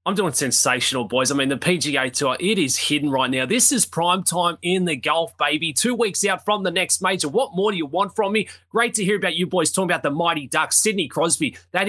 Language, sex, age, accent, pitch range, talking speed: English, male, 20-39, Australian, 160-220 Hz, 250 wpm